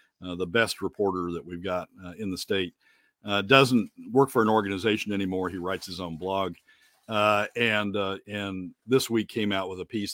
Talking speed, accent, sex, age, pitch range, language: 200 wpm, American, male, 50-69, 90-115 Hz, English